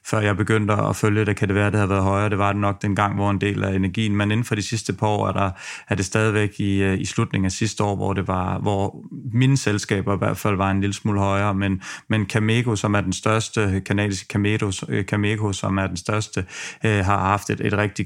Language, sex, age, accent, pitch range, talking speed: Danish, male, 30-49, native, 100-115 Hz, 250 wpm